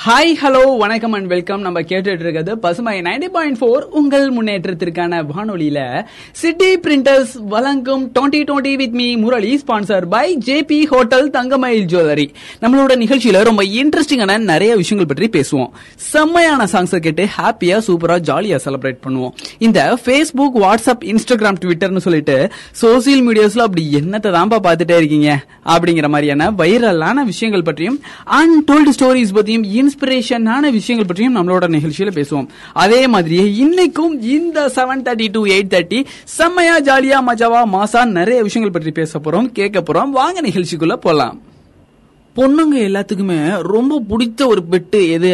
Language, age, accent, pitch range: Tamil, 20-39, native, 175-260 Hz